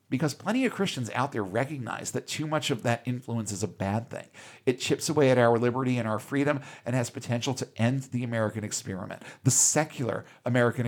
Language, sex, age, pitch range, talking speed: English, male, 50-69, 110-130 Hz, 205 wpm